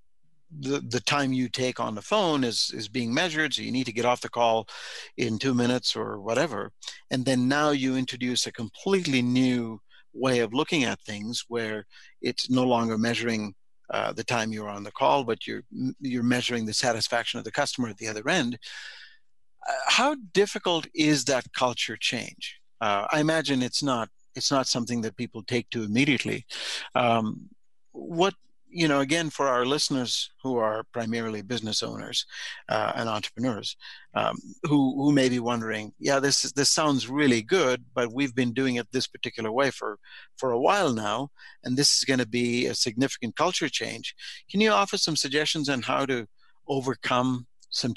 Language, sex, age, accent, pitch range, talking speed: English, male, 60-79, American, 115-140 Hz, 180 wpm